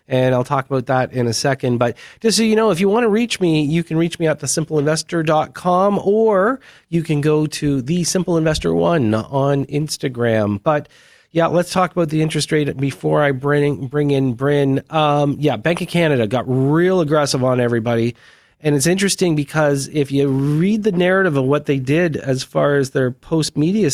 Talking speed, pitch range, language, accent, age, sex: 190 wpm, 130-170 Hz, English, American, 40-59, male